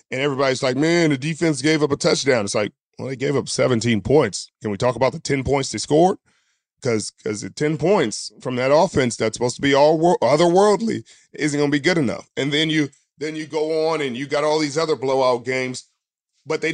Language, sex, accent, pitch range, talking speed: English, male, American, 120-155 Hz, 230 wpm